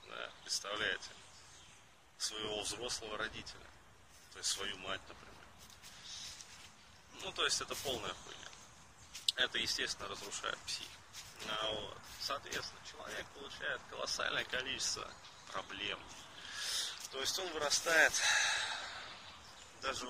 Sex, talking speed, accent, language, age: male, 100 wpm, native, Russian, 30-49